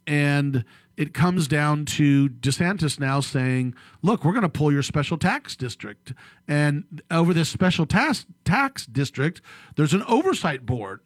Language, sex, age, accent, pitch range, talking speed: English, male, 40-59, American, 135-170 Hz, 150 wpm